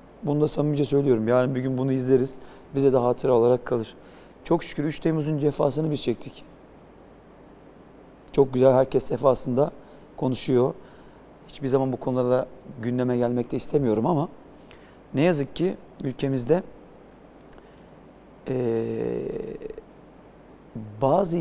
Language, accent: Turkish, native